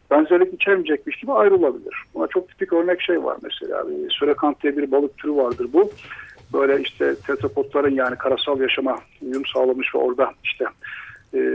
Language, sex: Turkish, male